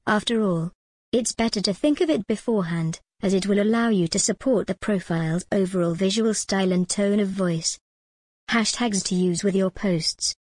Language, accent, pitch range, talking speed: English, British, 180-220 Hz, 175 wpm